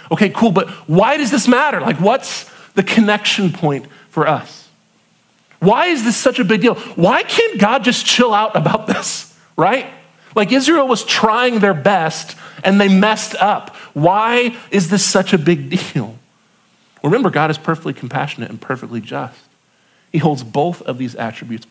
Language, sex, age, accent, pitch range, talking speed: English, male, 40-59, American, 125-205 Hz, 170 wpm